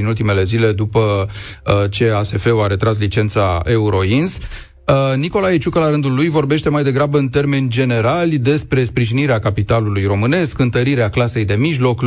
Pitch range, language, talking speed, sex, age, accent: 105-135 Hz, Romanian, 155 wpm, male, 30-49, native